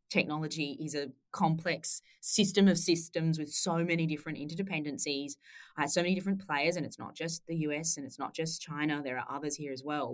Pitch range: 145-170 Hz